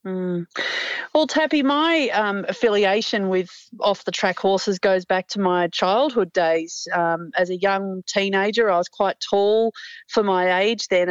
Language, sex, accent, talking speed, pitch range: English, female, Australian, 150 wpm, 185-210 Hz